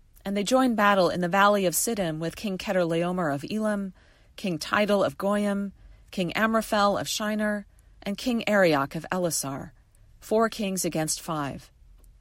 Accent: American